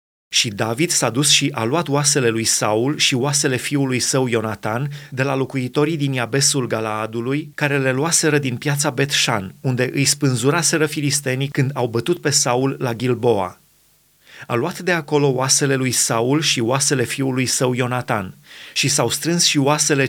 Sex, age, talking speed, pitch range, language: male, 30-49, 165 wpm, 120-145 Hz, Romanian